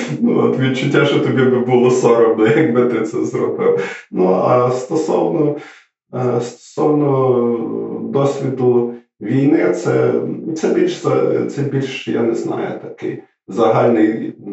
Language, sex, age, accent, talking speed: Ukrainian, male, 40-59, native, 115 wpm